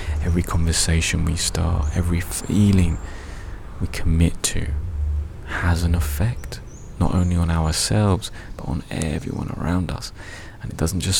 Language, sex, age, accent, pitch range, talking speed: English, male, 20-39, British, 85-95 Hz, 135 wpm